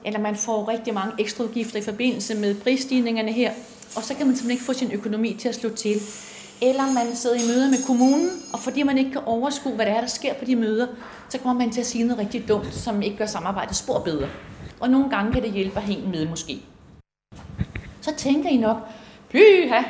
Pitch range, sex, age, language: 220-265 Hz, female, 30-49, Danish